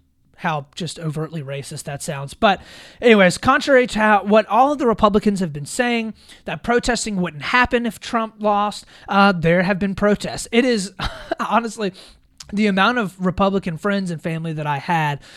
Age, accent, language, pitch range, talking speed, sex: 20-39, American, English, 165-225 Hz, 170 wpm, male